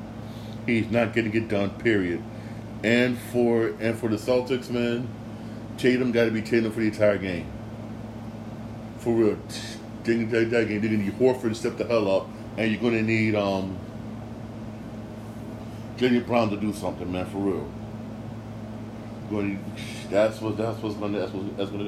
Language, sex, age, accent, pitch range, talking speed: English, male, 40-59, American, 110-115 Hz, 165 wpm